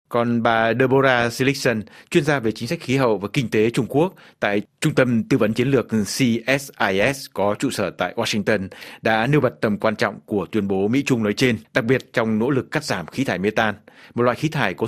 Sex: male